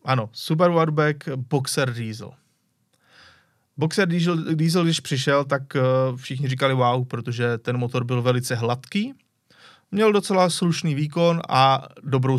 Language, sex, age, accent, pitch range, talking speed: Czech, male, 30-49, native, 130-150 Hz, 120 wpm